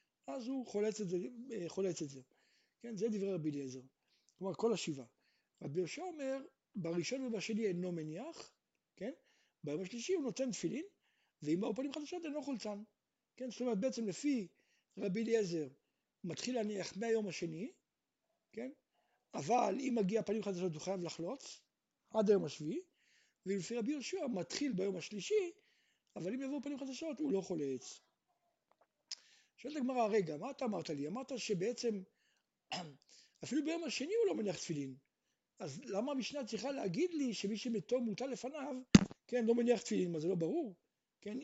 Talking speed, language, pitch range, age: 155 wpm, Hebrew, 185-265 Hz, 60-79